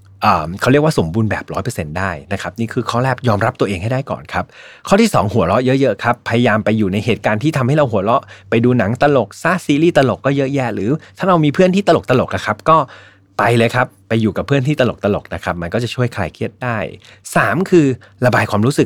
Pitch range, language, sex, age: 100-130 Hz, Thai, male, 20-39